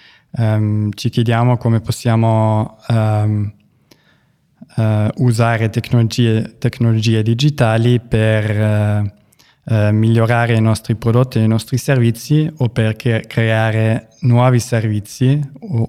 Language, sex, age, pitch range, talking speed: Italian, male, 20-39, 110-120 Hz, 105 wpm